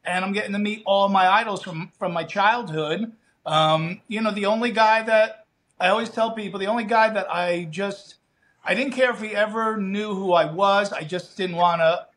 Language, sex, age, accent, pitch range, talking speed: English, male, 40-59, American, 165-215 Hz, 215 wpm